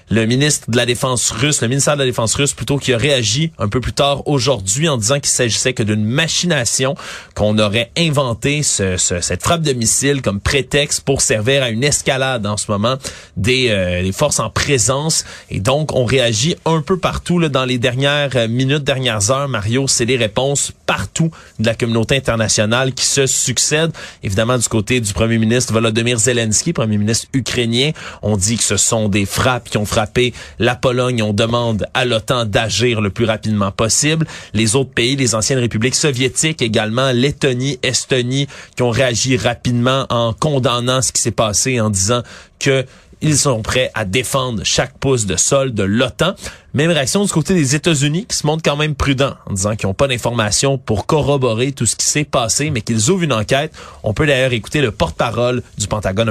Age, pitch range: 30-49, 110-140 Hz